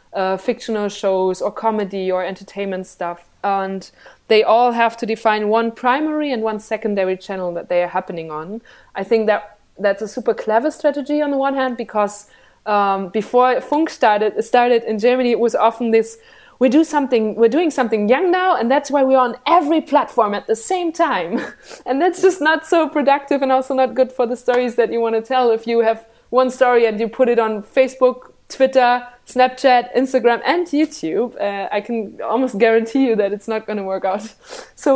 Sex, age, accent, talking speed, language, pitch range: female, 20-39, German, 195 wpm, English, 205-255 Hz